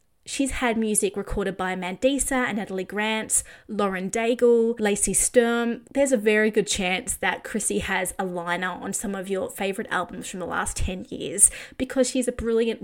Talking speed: 180 wpm